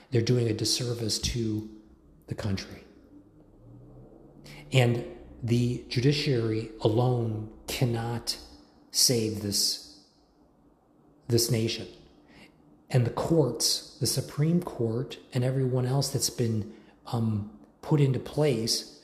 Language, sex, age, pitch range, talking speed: English, male, 40-59, 100-125 Hz, 100 wpm